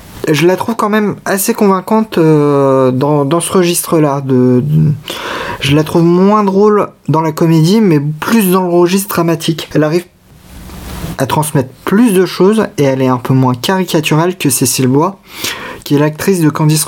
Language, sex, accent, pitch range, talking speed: French, male, French, 130-175 Hz, 165 wpm